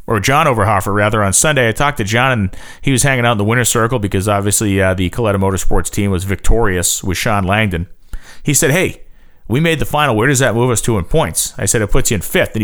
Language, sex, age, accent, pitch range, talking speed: English, male, 40-59, American, 95-125 Hz, 255 wpm